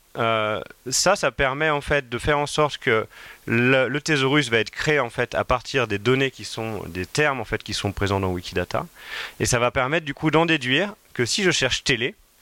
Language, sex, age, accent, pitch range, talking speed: French, male, 30-49, French, 110-135 Hz, 220 wpm